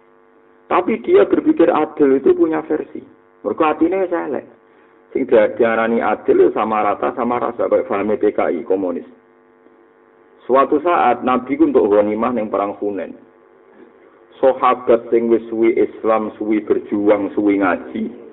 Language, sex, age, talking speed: Indonesian, male, 50-69, 120 wpm